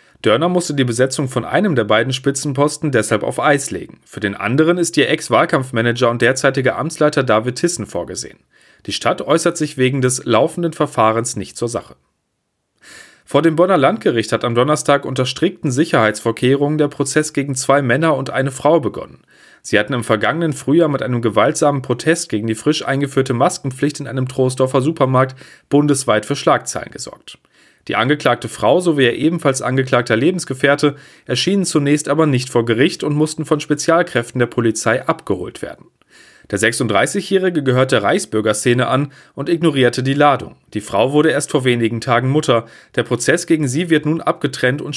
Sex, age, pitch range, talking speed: male, 40-59, 125-155 Hz, 165 wpm